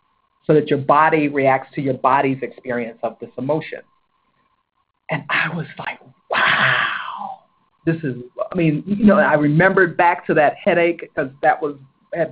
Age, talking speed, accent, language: 50-69, 160 wpm, American, English